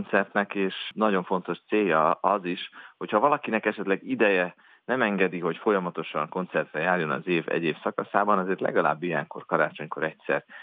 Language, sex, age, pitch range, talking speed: Hungarian, male, 40-59, 85-100 Hz, 145 wpm